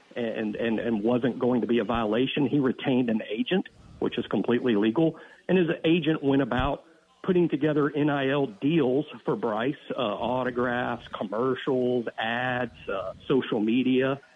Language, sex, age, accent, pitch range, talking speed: English, male, 50-69, American, 120-155 Hz, 145 wpm